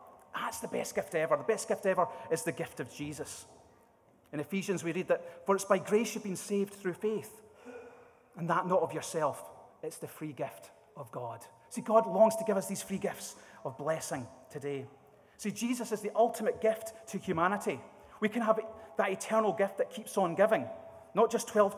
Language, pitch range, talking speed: English, 150-210 Hz, 200 wpm